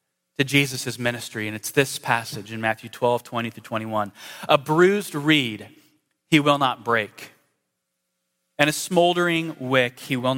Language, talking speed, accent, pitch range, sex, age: English, 145 wpm, American, 115-155 Hz, male, 30-49